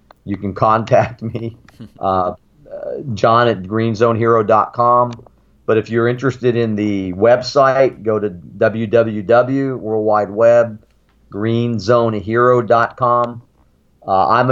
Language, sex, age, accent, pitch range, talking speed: English, male, 40-59, American, 100-115 Hz, 90 wpm